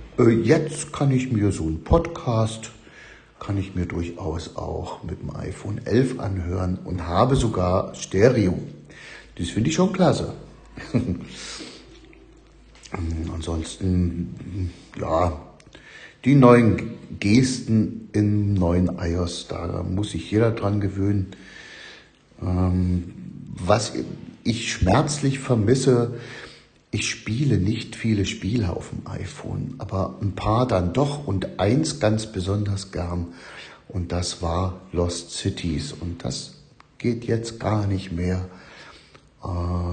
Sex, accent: male, German